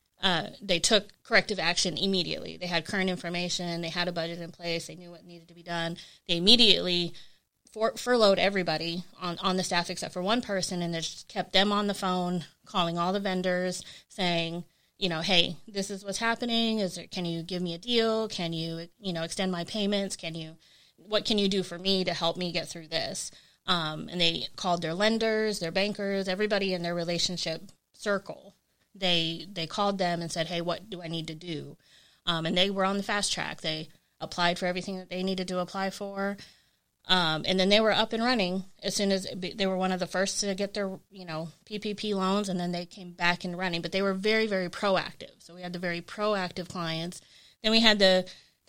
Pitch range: 170-200 Hz